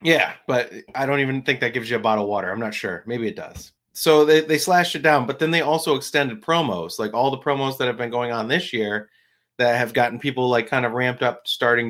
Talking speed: 260 wpm